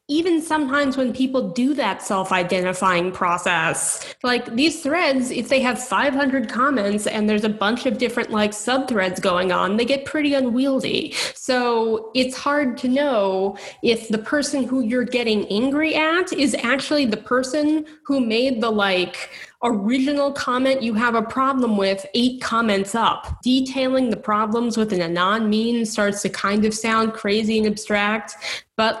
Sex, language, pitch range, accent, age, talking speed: female, English, 210-270 Hz, American, 30-49, 155 wpm